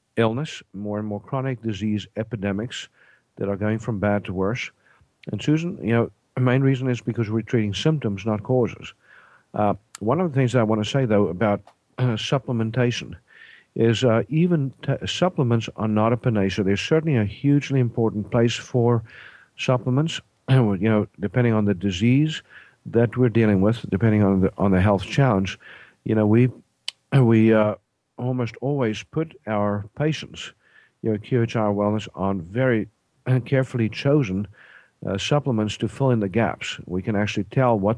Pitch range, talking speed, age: 105-130 Hz, 165 wpm, 50-69